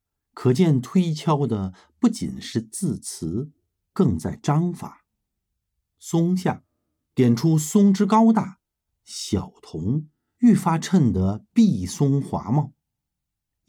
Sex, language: male, Chinese